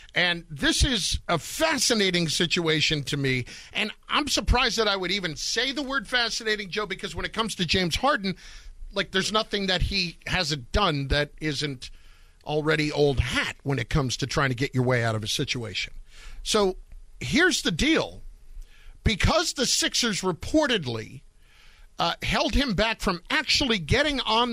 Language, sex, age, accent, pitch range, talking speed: English, male, 50-69, American, 155-225 Hz, 165 wpm